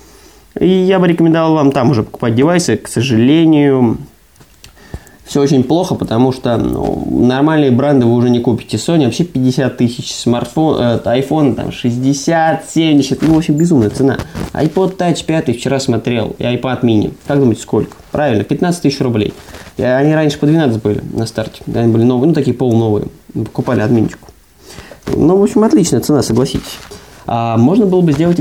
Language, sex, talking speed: Russian, male, 170 wpm